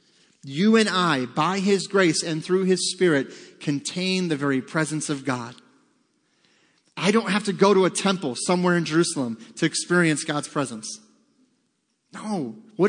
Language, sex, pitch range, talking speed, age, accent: English, male, 155-205 Hz, 155 wpm, 30-49, American